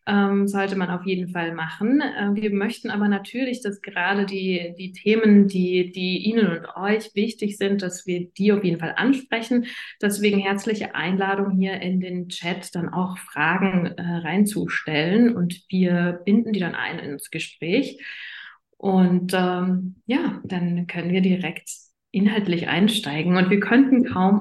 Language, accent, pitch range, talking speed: German, German, 180-205 Hz, 150 wpm